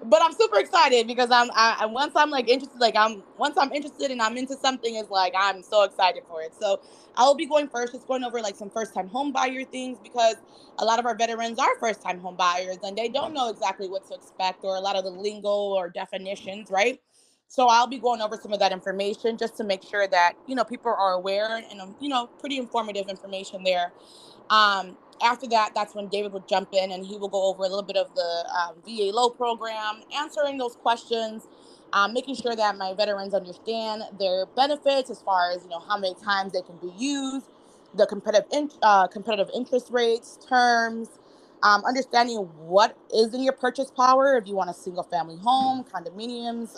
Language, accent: English, American